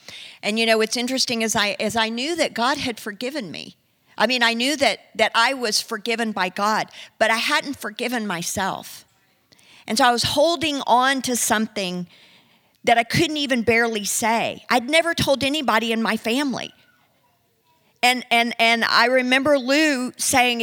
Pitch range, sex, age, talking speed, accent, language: 230-285 Hz, female, 50-69, 170 wpm, American, English